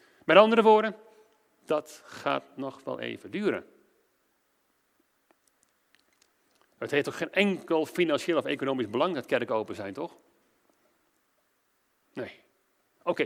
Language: Dutch